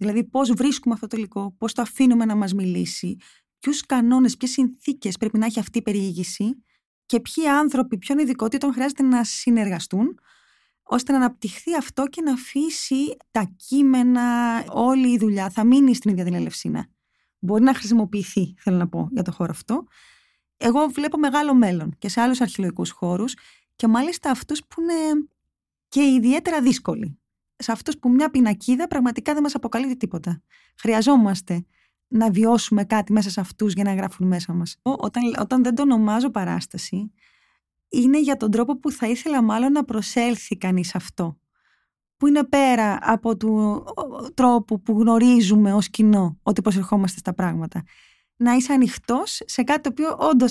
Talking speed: 165 wpm